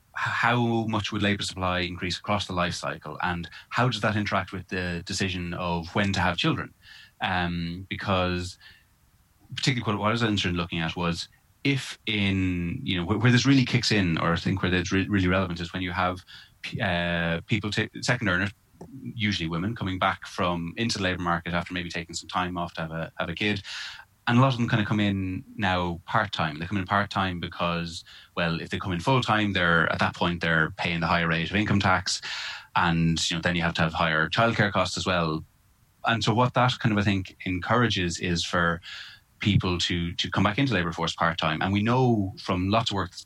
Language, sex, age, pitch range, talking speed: English, male, 20-39, 85-105 Hz, 220 wpm